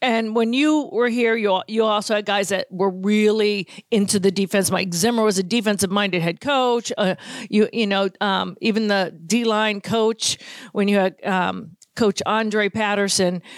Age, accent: 50-69, American